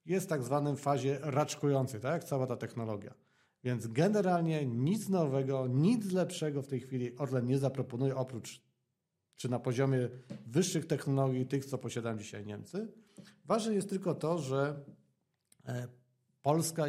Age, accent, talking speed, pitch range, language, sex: 40-59, native, 140 wpm, 120-150 Hz, Polish, male